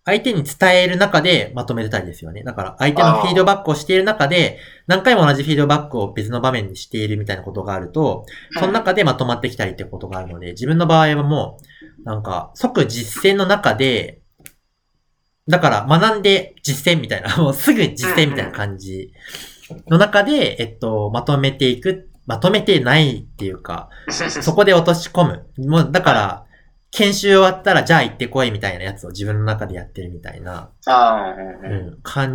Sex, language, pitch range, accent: male, Japanese, 105-165 Hz, native